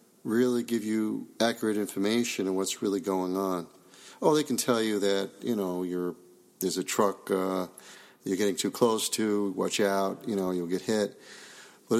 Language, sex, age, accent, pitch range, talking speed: English, male, 50-69, American, 95-120 Hz, 175 wpm